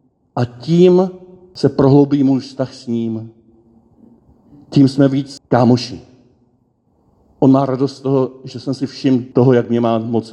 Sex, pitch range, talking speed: male, 110-135 Hz, 150 wpm